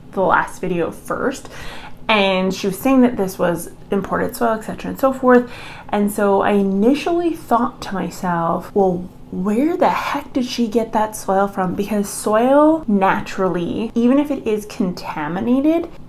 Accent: American